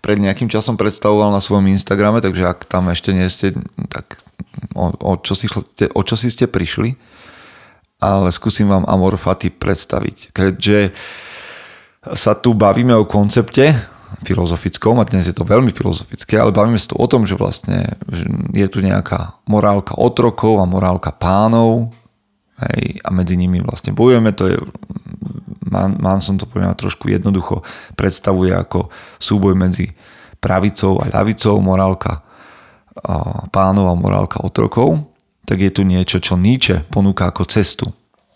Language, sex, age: Slovak, male, 30-49